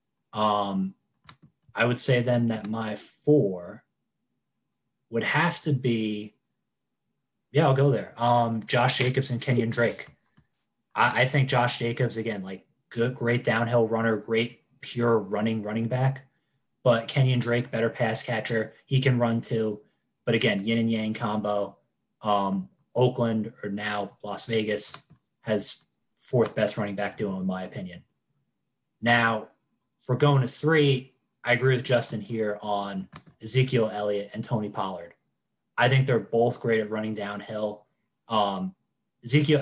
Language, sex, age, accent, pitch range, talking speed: English, male, 20-39, American, 105-125 Hz, 145 wpm